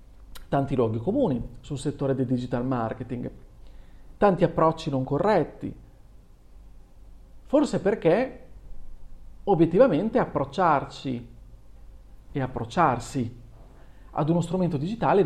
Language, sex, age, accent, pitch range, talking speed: Italian, male, 40-59, native, 115-160 Hz, 85 wpm